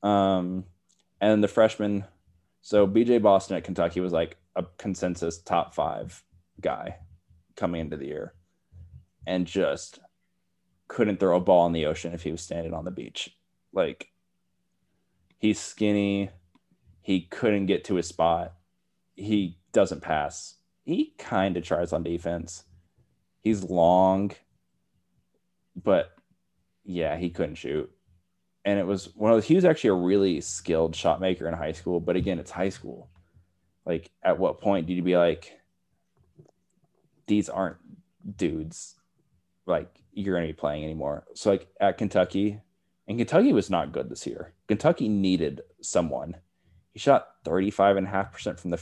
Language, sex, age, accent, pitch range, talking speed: English, male, 20-39, American, 85-100 Hz, 145 wpm